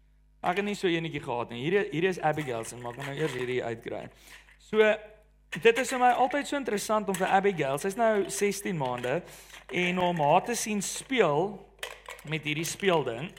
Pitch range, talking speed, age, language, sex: 180-235 Hz, 195 wpm, 40-59, English, male